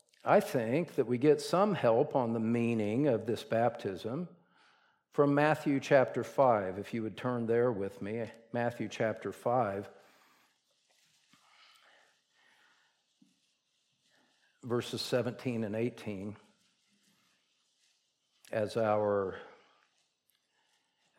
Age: 50-69